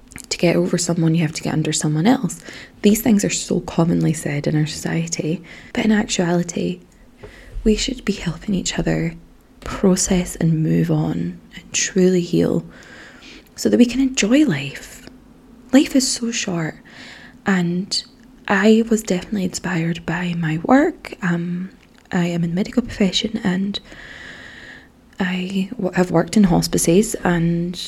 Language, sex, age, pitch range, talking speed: English, female, 20-39, 165-210 Hz, 140 wpm